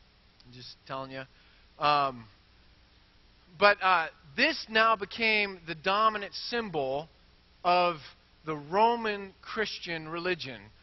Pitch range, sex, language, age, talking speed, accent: 145-195 Hz, male, English, 30-49, 100 wpm, American